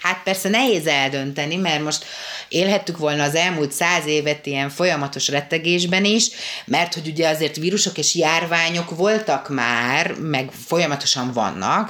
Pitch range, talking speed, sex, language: 140-175 Hz, 140 wpm, female, Hungarian